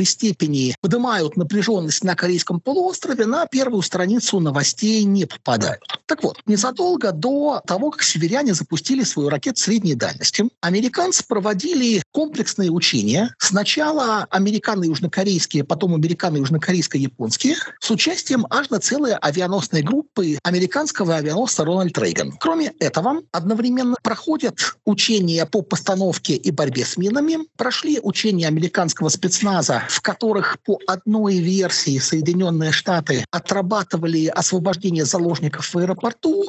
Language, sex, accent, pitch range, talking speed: Russian, male, native, 170-230 Hz, 115 wpm